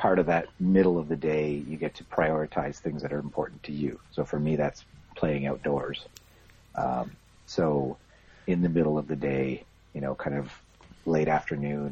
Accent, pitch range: American, 70-85 Hz